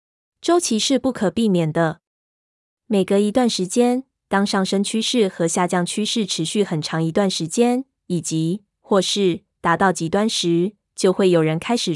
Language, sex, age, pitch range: Chinese, female, 20-39, 180-215 Hz